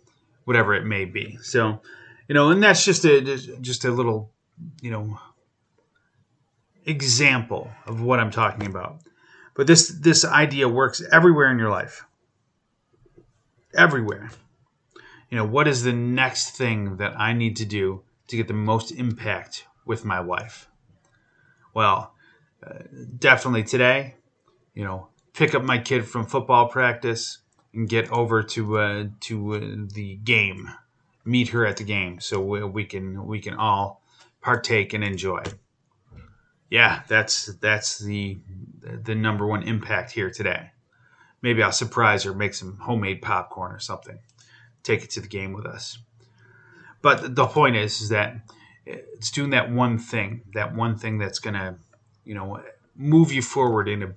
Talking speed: 155 wpm